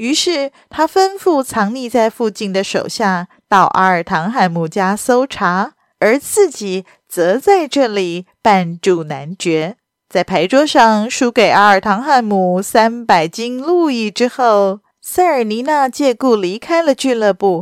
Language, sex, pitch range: Chinese, female, 190-275 Hz